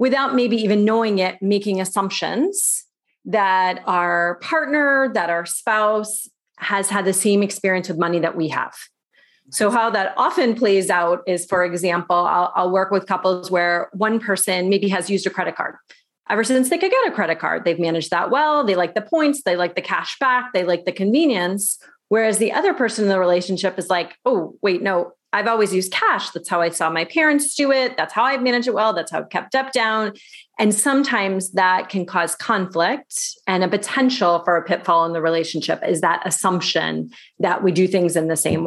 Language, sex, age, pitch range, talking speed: English, female, 30-49, 180-230 Hz, 205 wpm